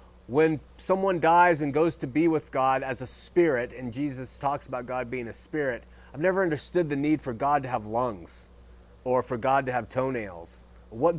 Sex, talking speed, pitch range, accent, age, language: male, 200 wpm, 115-175 Hz, American, 30-49, English